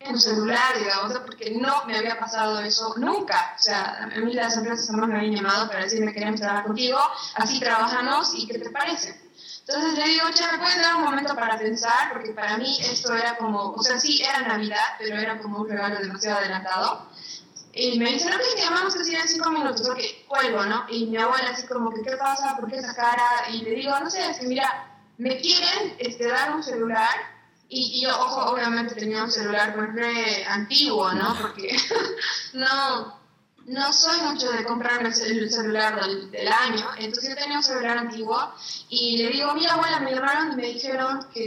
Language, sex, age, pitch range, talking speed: Spanish, female, 20-39, 220-290 Hz, 205 wpm